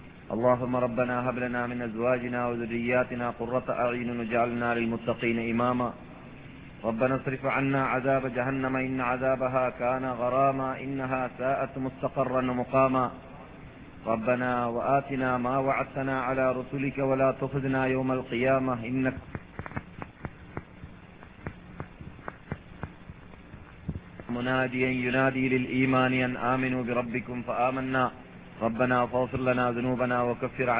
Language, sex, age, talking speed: Malayalam, male, 30-49, 90 wpm